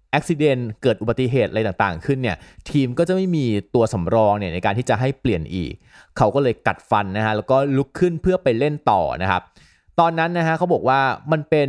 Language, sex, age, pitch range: Thai, male, 20-39, 100-130 Hz